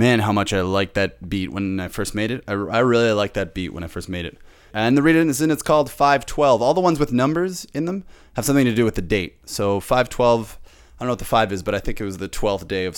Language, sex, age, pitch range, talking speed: English, male, 20-39, 95-135 Hz, 280 wpm